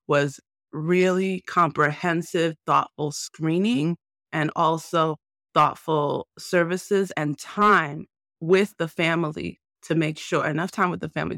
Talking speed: 115 wpm